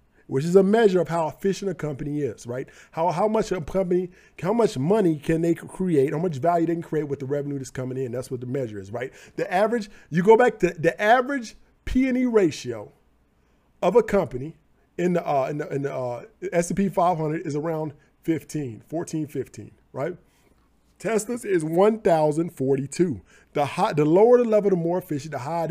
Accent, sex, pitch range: American, male, 140-195 Hz